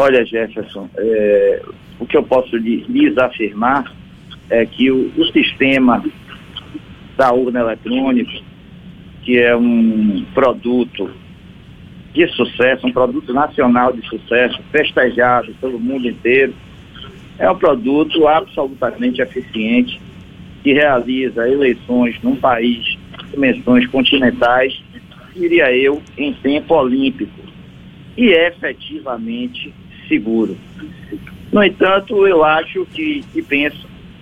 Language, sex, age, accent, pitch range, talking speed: Portuguese, male, 50-69, Brazilian, 120-150 Hz, 110 wpm